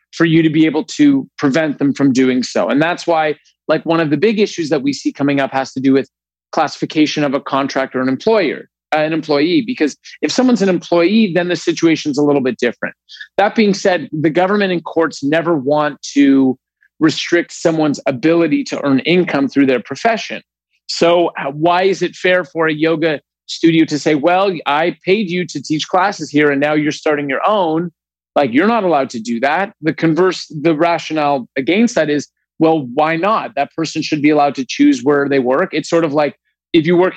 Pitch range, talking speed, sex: 140-175 Hz, 205 wpm, male